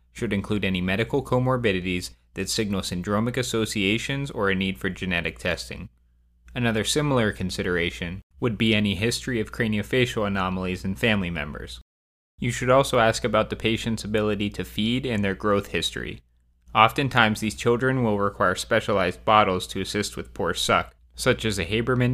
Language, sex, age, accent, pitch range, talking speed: English, male, 20-39, American, 90-115 Hz, 155 wpm